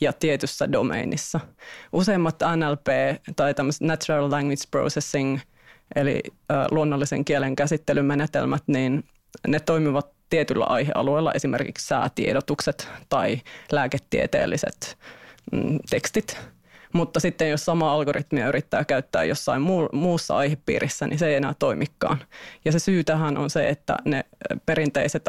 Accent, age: native, 30-49